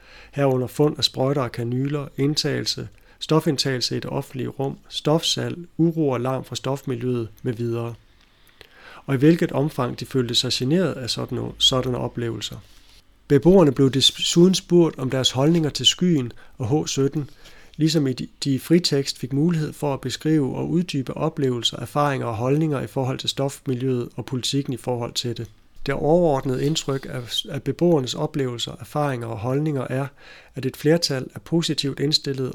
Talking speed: 155 wpm